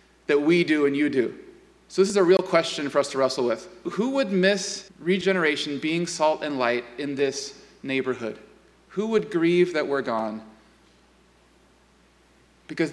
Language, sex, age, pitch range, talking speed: English, male, 30-49, 130-180 Hz, 160 wpm